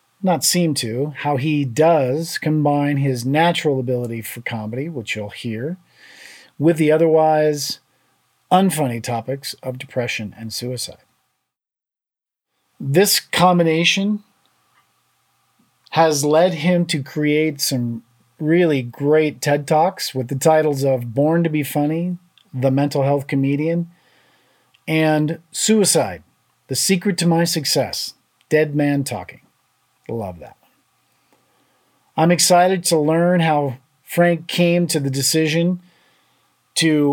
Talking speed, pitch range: 115 wpm, 135-170 Hz